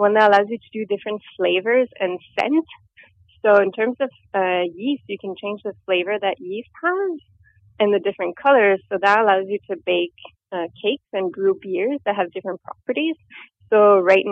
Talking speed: 190 wpm